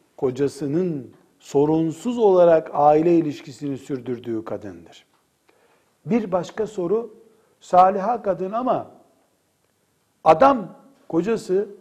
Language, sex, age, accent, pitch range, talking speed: Turkish, male, 60-79, native, 135-200 Hz, 75 wpm